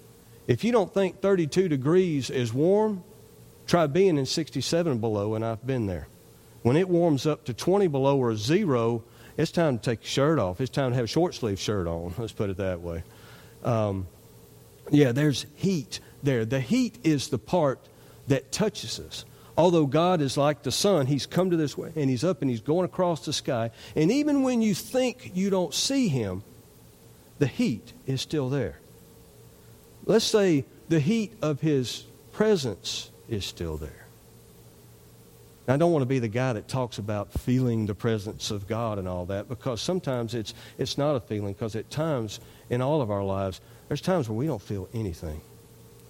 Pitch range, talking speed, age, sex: 110-155 Hz, 185 wpm, 50-69, male